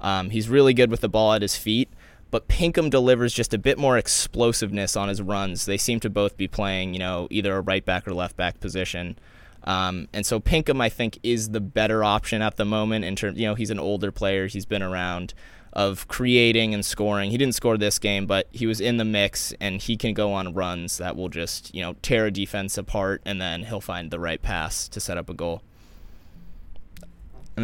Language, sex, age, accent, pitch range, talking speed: English, male, 20-39, American, 95-110 Hz, 225 wpm